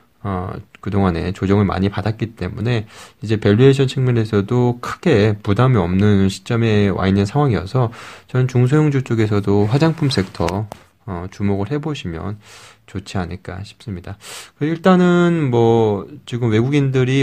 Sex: male